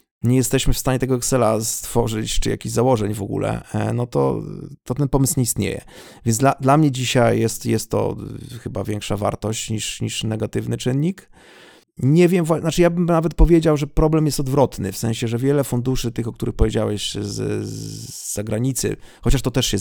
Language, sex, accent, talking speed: Polish, male, native, 185 wpm